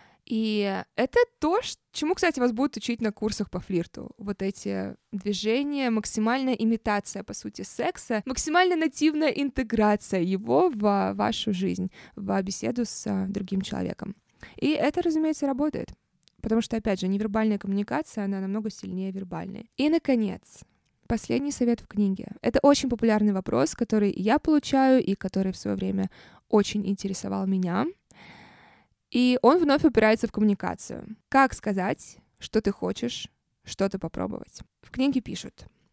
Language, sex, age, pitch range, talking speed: Russian, female, 20-39, 200-260 Hz, 140 wpm